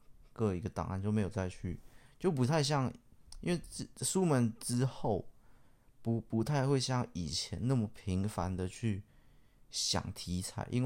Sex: male